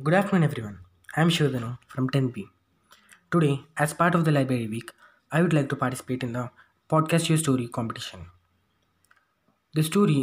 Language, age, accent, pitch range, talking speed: English, 20-39, Indian, 125-155 Hz, 170 wpm